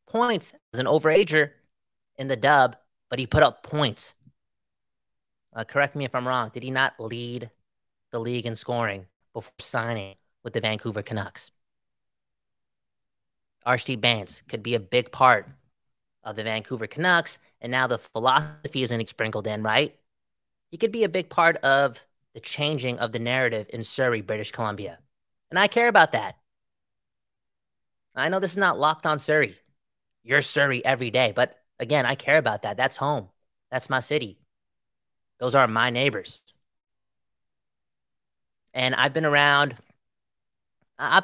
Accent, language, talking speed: American, English, 150 wpm